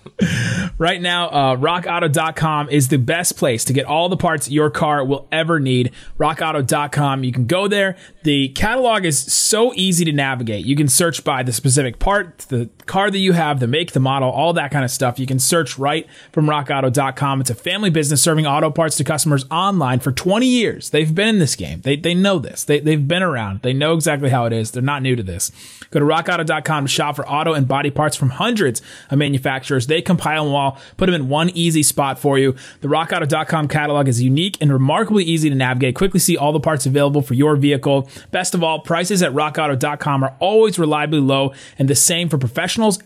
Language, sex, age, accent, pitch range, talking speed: English, male, 30-49, American, 135-175 Hz, 215 wpm